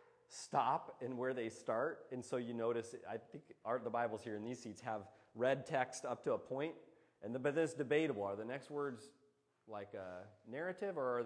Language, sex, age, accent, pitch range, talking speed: English, male, 30-49, American, 110-145 Hz, 210 wpm